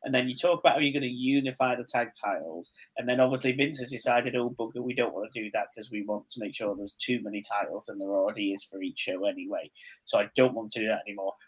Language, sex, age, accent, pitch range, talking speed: English, male, 20-39, British, 110-155 Hz, 275 wpm